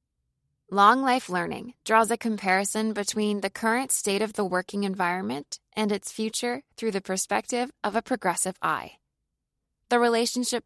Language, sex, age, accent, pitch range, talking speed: English, female, 20-39, American, 190-235 Hz, 140 wpm